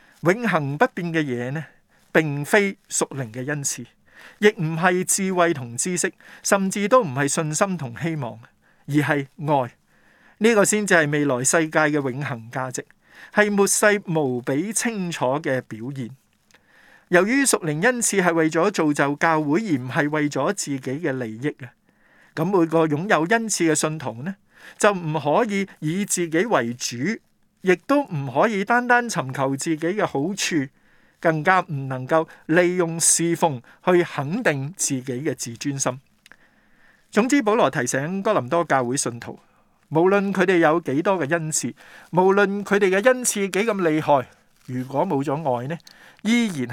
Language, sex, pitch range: Chinese, male, 135-195 Hz